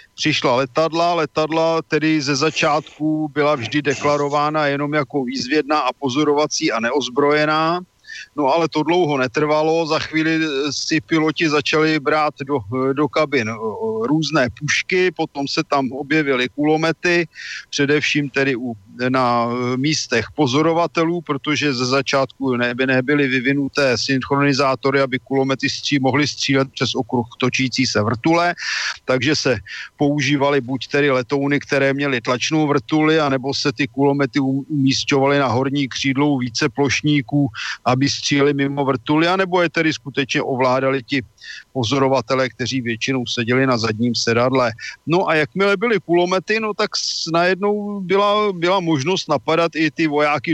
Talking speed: 135 wpm